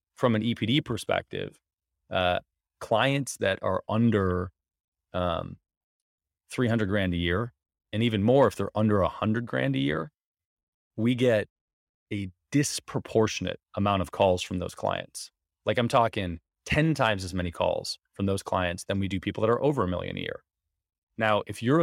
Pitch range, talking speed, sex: 90-110 Hz, 160 wpm, male